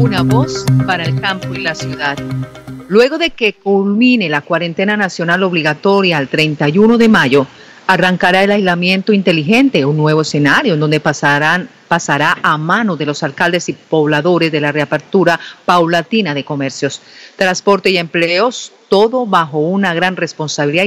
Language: Spanish